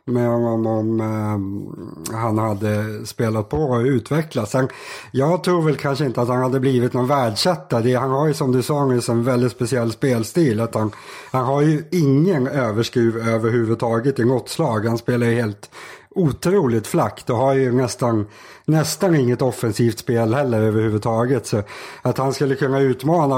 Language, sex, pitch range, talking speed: Swedish, male, 110-135 Hz, 165 wpm